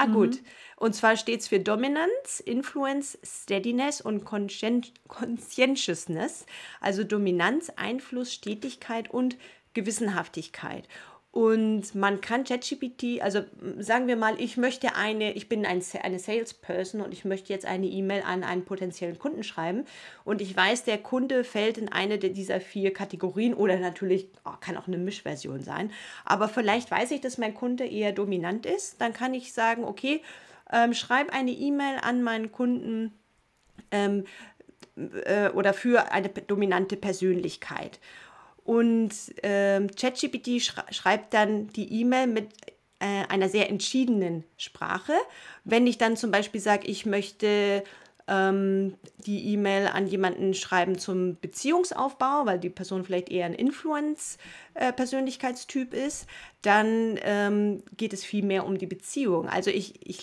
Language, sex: English, female